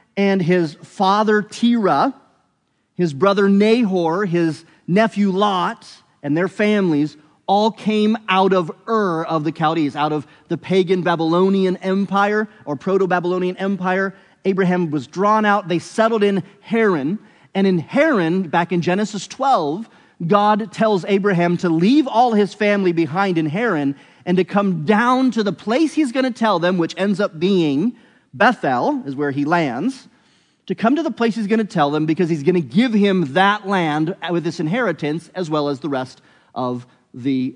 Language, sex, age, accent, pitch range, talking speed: English, male, 30-49, American, 165-215 Hz, 170 wpm